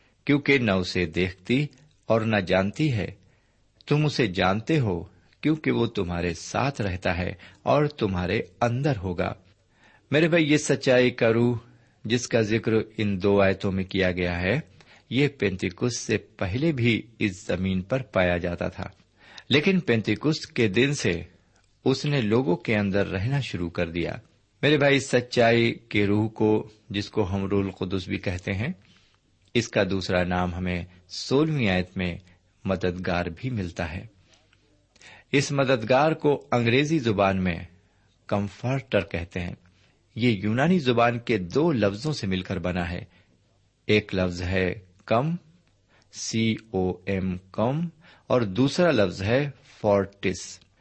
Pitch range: 95-125 Hz